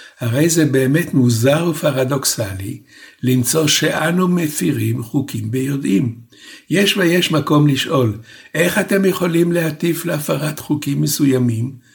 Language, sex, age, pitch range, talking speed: Hebrew, male, 60-79, 120-155 Hz, 105 wpm